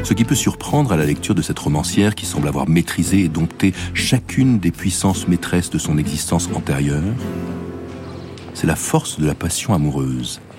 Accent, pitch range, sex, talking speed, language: French, 80-100 Hz, male, 175 wpm, French